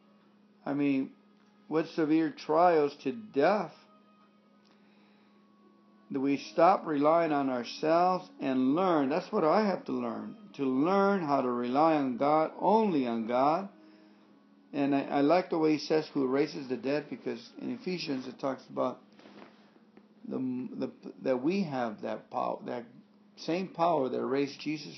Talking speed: 150 wpm